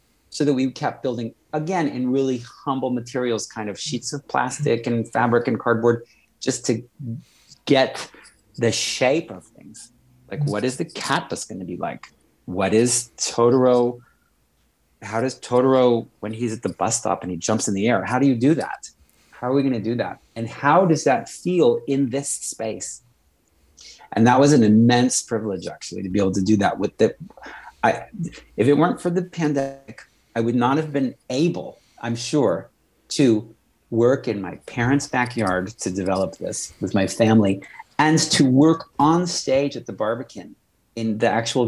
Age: 30-49